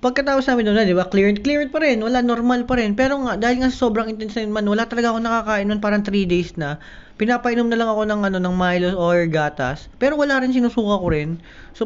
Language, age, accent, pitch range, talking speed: Filipino, 20-39, native, 175-245 Hz, 245 wpm